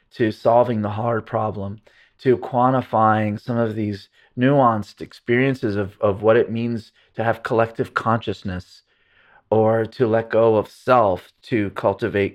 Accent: American